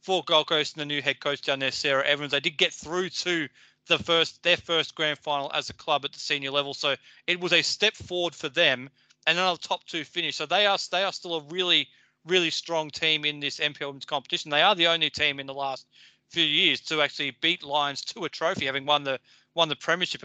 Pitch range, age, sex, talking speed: 140-165 Hz, 30-49, male, 245 wpm